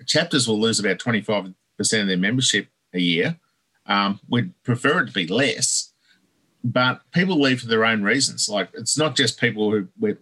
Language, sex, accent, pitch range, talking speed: English, male, Australian, 105-135 Hz, 175 wpm